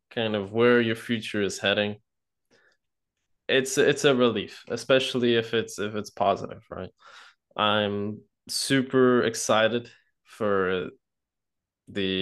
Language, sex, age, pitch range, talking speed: English, male, 20-39, 100-120 Hz, 115 wpm